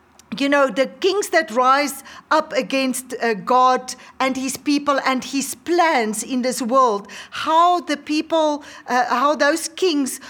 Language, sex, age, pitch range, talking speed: English, female, 40-59, 245-300 Hz, 150 wpm